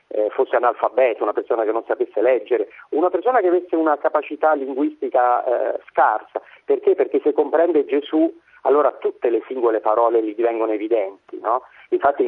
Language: Italian